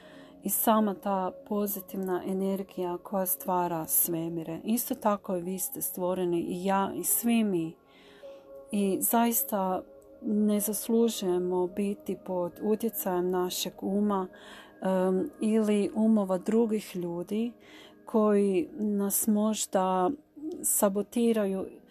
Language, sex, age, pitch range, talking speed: Croatian, female, 40-59, 185-215 Hz, 100 wpm